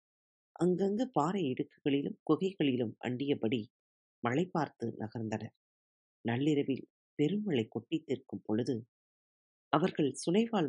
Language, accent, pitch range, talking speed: Tamil, native, 110-155 Hz, 80 wpm